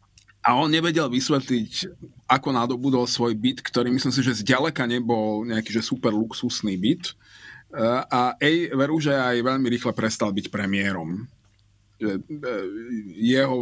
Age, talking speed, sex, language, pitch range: 30-49, 130 wpm, male, Slovak, 105-130 Hz